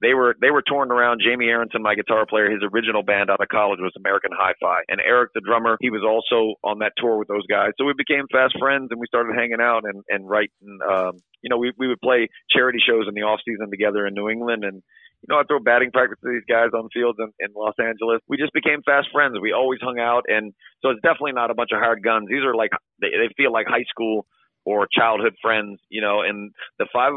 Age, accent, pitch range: 40-59, American, 105-120 Hz